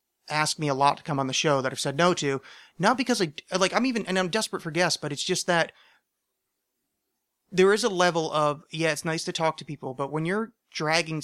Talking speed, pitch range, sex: 240 wpm, 135-165 Hz, male